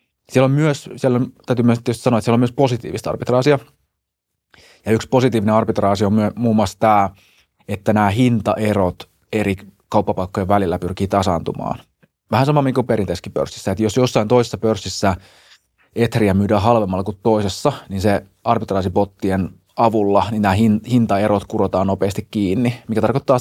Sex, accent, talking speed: male, native, 150 wpm